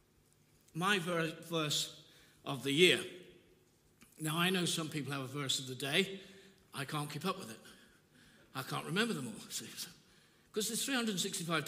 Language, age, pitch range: English, 60-79, 155-205 Hz